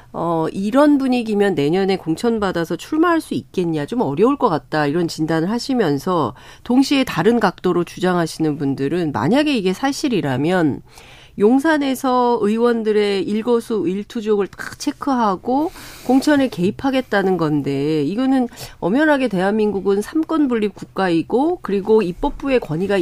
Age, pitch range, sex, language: 40-59, 190-290 Hz, female, Korean